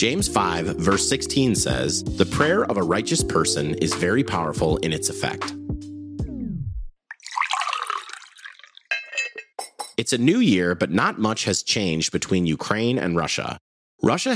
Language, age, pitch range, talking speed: English, 30-49, 80-115 Hz, 130 wpm